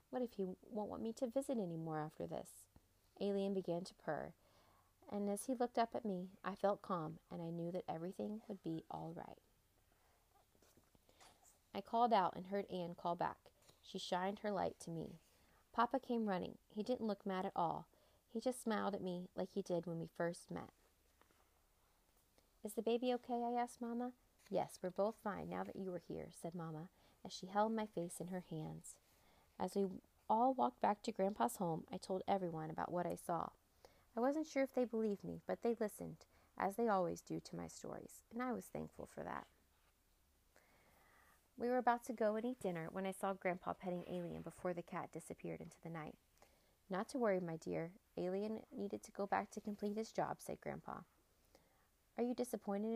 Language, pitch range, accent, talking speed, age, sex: English, 165-220 Hz, American, 195 wpm, 30-49, female